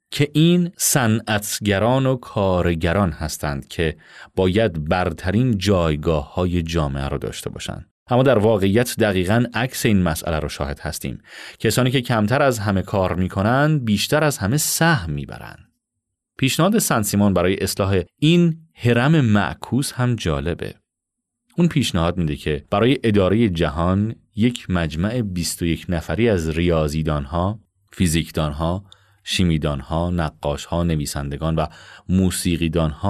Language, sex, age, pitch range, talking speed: Persian, male, 30-49, 85-115 Hz, 125 wpm